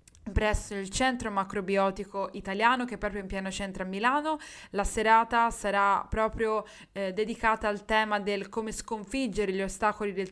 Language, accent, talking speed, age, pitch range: Italian, native, 155 wpm, 20-39, 195-230 Hz